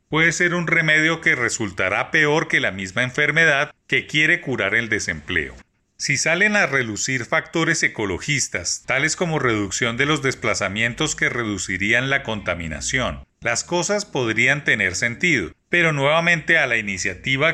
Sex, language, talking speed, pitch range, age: male, Spanish, 145 wpm, 115-160 Hz, 40-59